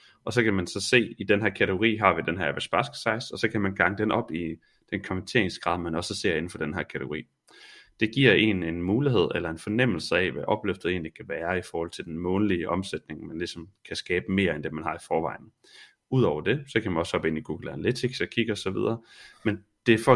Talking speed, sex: 250 wpm, male